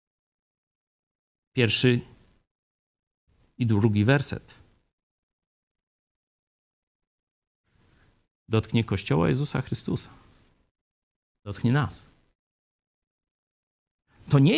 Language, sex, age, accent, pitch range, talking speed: Polish, male, 50-69, native, 100-150 Hz, 50 wpm